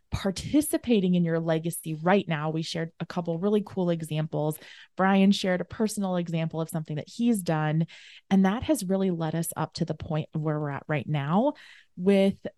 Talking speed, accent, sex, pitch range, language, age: 190 wpm, American, female, 160-210 Hz, English, 20-39